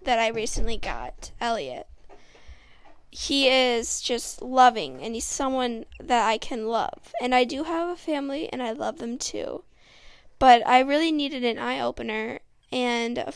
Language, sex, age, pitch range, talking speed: English, female, 10-29, 240-285 Hz, 155 wpm